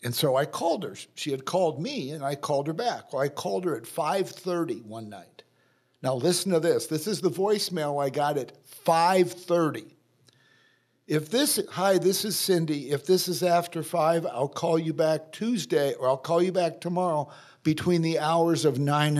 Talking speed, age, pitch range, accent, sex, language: 190 wpm, 60-79, 145-185 Hz, American, male, English